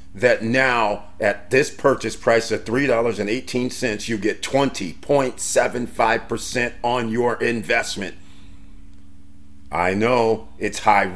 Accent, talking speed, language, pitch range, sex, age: American, 95 wpm, English, 110-140 Hz, male, 50-69